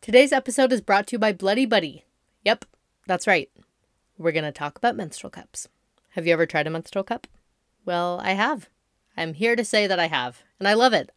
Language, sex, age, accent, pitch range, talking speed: English, female, 30-49, American, 170-235 Hz, 215 wpm